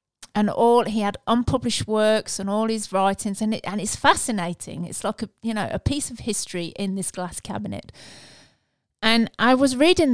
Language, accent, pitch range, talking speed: English, British, 185-230 Hz, 190 wpm